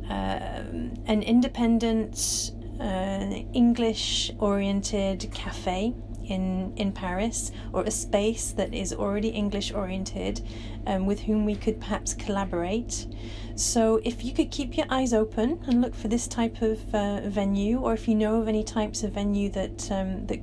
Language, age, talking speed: English, 30-49, 150 wpm